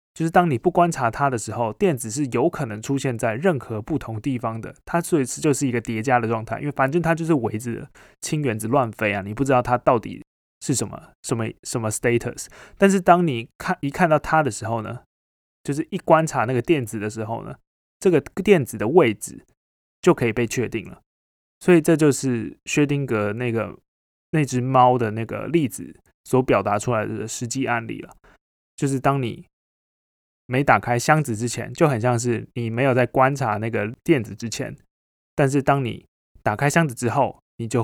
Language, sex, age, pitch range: Chinese, male, 20-39, 115-145 Hz